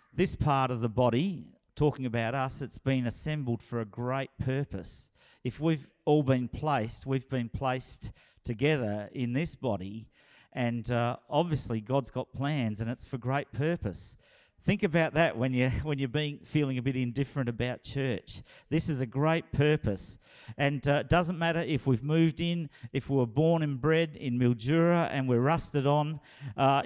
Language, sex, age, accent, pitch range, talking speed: English, male, 50-69, Australian, 120-150 Hz, 175 wpm